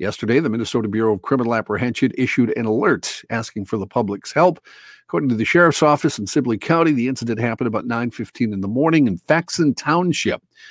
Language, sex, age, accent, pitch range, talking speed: English, male, 50-69, American, 110-140 Hz, 190 wpm